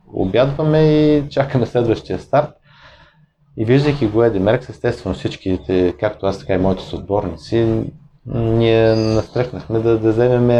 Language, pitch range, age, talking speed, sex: Bulgarian, 100-130 Hz, 30-49, 130 wpm, male